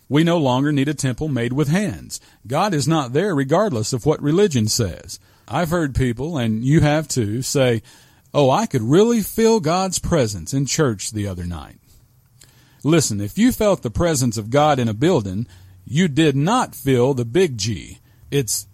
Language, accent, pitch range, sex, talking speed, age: English, American, 120-160 Hz, male, 185 wpm, 40-59